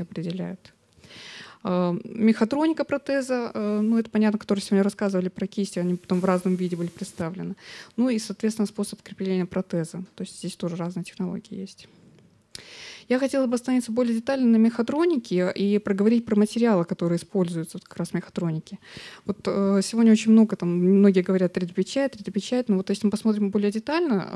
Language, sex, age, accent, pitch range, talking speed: Russian, female, 20-39, native, 185-225 Hz, 165 wpm